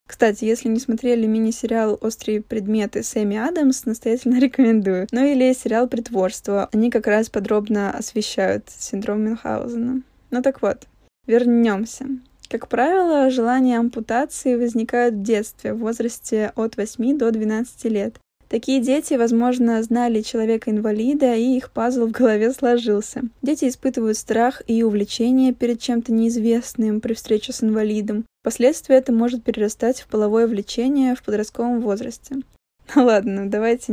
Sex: female